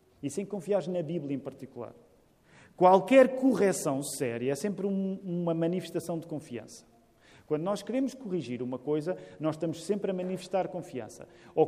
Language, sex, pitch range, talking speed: Portuguese, male, 155-235 Hz, 150 wpm